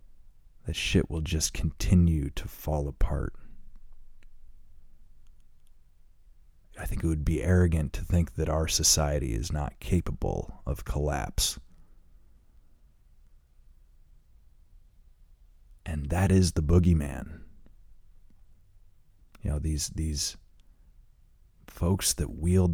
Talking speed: 95 wpm